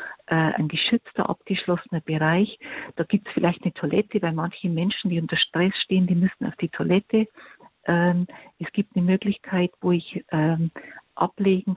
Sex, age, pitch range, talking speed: female, 50-69, 170-205 Hz, 165 wpm